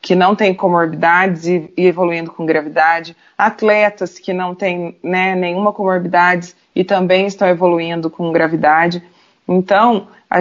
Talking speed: 135 wpm